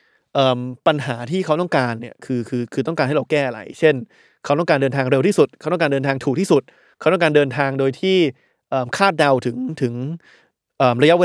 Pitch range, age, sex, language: 135-175 Hz, 20-39, male, Thai